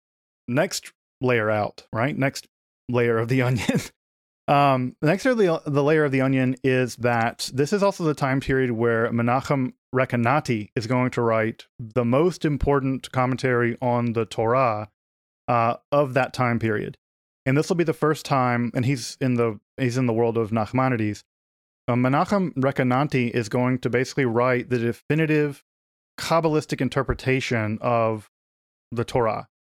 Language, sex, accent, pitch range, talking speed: English, male, American, 115-140 Hz, 155 wpm